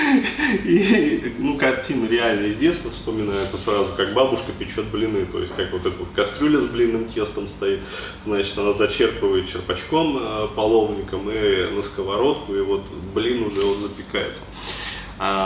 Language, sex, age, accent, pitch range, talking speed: Russian, male, 20-39, native, 95-110 Hz, 150 wpm